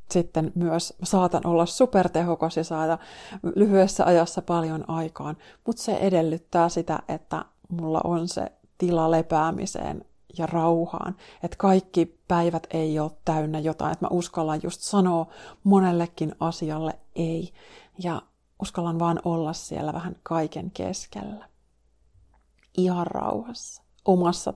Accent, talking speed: native, 120 wpm